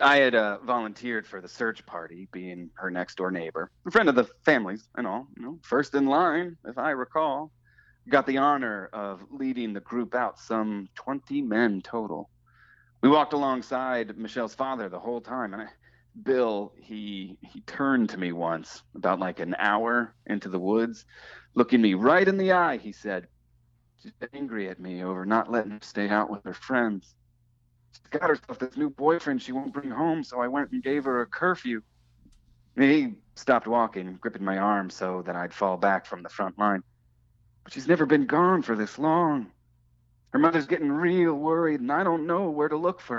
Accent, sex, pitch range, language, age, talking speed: American, male, 95-135 Hz, English, 30-49, 190 wpm